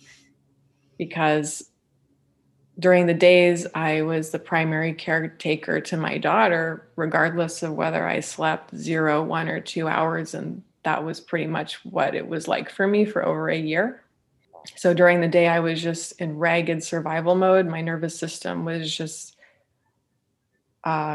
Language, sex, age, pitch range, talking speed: English, female, 20-39, 160-180 Hz, 155 wpm